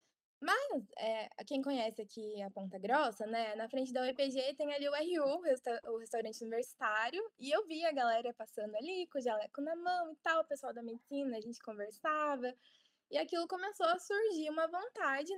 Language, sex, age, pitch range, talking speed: Portuguese, female, 10-29, 235-335 Hz, 185 wpm